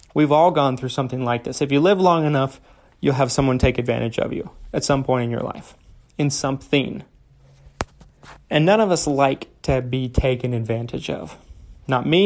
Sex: male